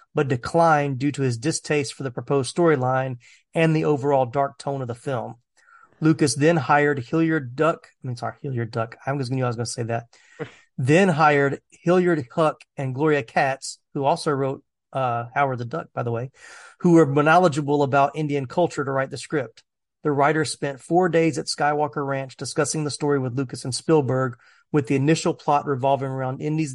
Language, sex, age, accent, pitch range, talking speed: English, male, 30-49, American, 135-160 Hz, 185 wpm